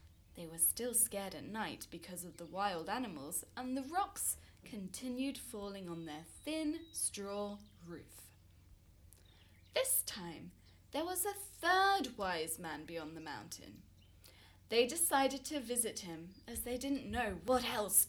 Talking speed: 145 wpm